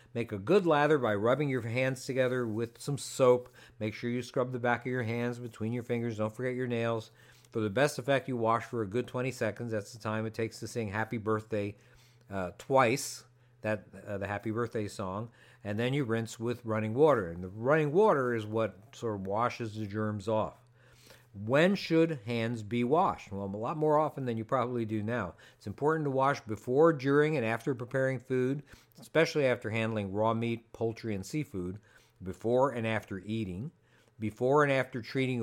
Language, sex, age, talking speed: English, male, 50-69, 195 wpm